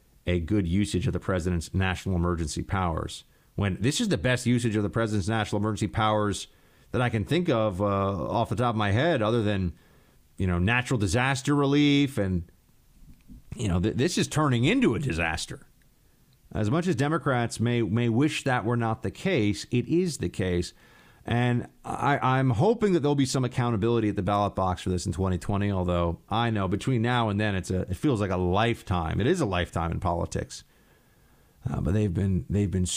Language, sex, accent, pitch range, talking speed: English, male, American, 90-125 Hz, 195 wpm